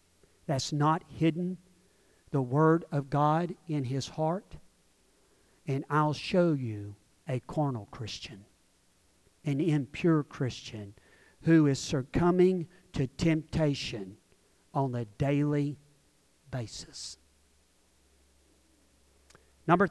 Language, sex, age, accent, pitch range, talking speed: English, male, 50-69, American, 130-165 Hz, 90 wpm